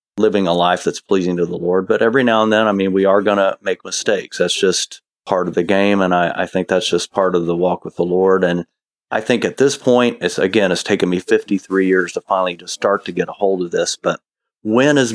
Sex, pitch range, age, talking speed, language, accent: male, 90-100 Hz, 40-59, 260 wpm, English, American